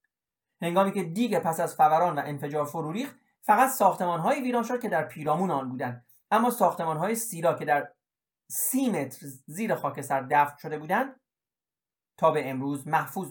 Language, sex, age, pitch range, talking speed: Persian, male, 40-59, 155-235 Hz, 160 wpm